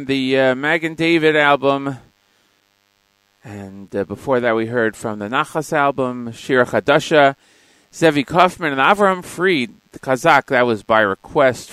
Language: English